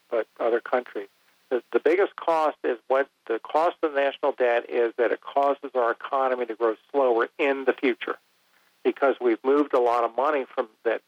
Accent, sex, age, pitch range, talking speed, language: American, male, 50-69, 110-135 Hz, 195 wpm, English